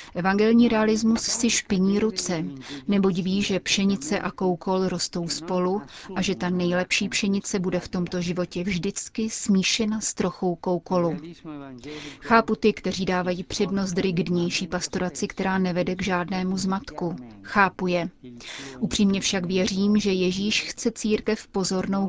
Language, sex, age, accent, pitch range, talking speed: Czech, female, 30-49, native, 180-200 Hz, 135 wpm